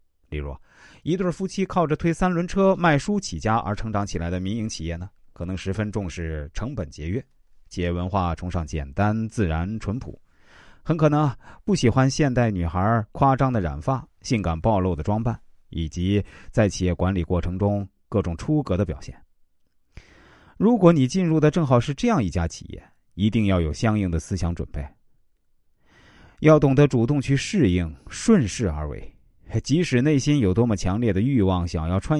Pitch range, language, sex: 85-125 Hz, Chinese, male